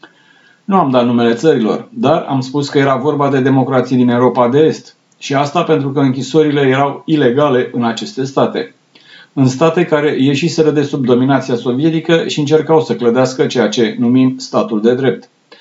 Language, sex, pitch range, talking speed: Romanian, male, 120-150 Hz, 175 wpm